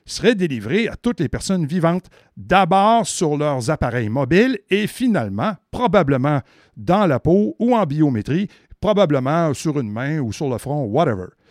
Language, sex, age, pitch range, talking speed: French, male, 60-79, 135-205 Hz, 155 wpm